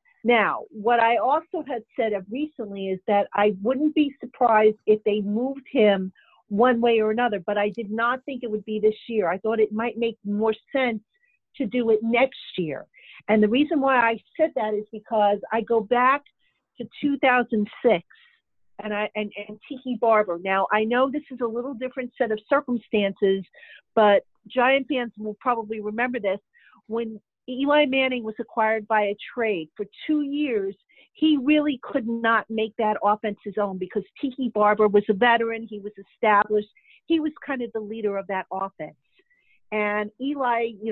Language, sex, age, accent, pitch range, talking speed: English, female, 50-69, American, 210-255 Hz, 180 wpm